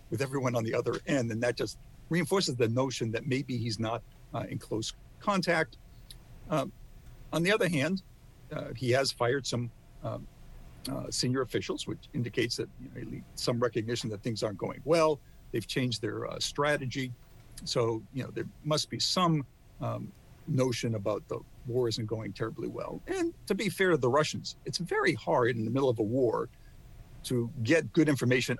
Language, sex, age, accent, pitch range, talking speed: English, male, 50-69, American, 115-135 Hz, 185 wpm